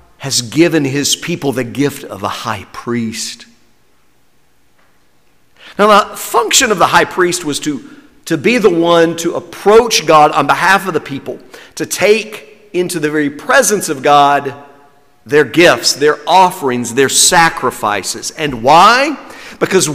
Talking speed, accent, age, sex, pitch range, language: 145 wpm, American, 50-69, male, 145-210 Hz, English